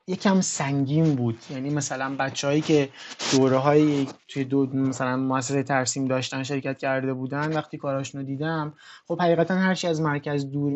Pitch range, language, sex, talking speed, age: 135-165 Hz, Persian, male, 145 wpm, 20-39